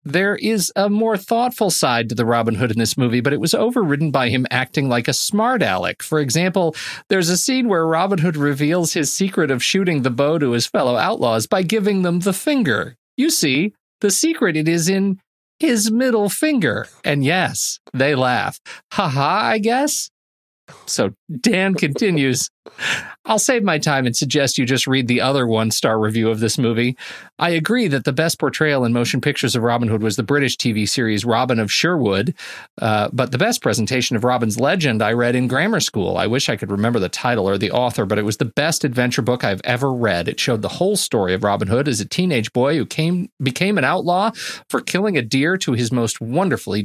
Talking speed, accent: 210 wpm, American